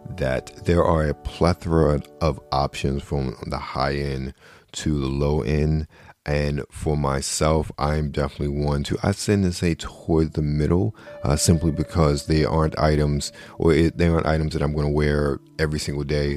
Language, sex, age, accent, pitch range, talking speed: English, male, 40-59, American, 70-80 Hz, 170 wpm